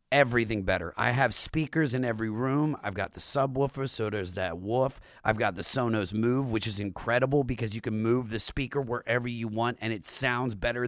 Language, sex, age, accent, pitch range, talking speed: English, male, 30-49, American, 115-160 Hz, 205 wpm